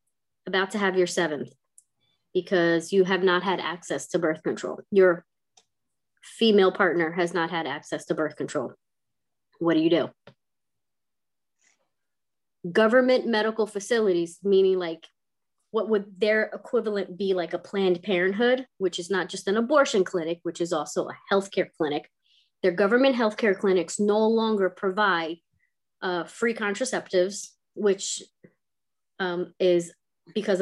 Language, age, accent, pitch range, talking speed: English, 30-49, American, 180-225 Hz, 135 wpm